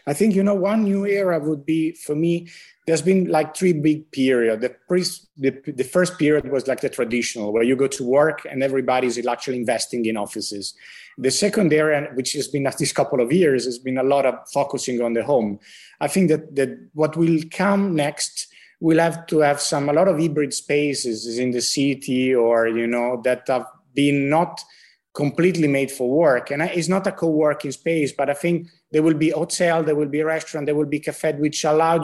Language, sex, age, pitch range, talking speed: English, male, 30-49, 130-160 Hz, 215 wpm